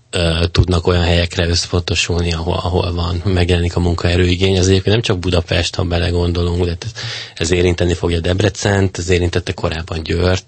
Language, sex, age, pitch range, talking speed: Hungarian, male, 20-39, 85-95 Hz, 155 wpm